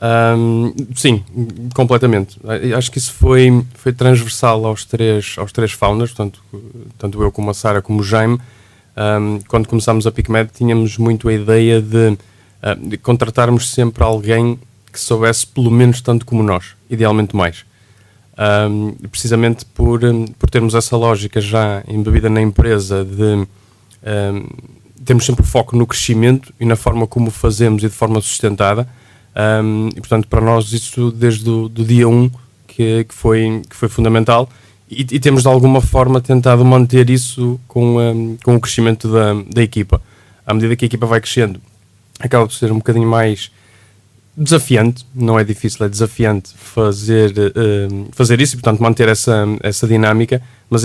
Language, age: Portuguese, 20-39